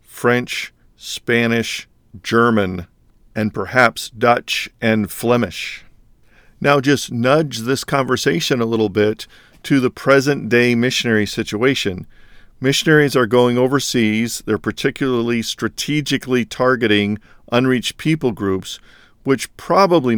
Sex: male